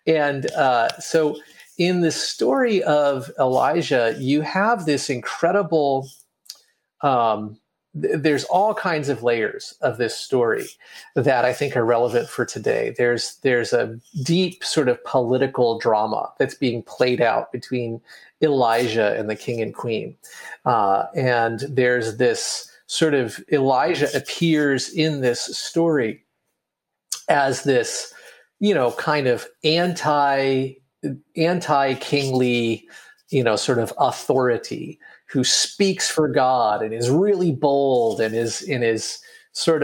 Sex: male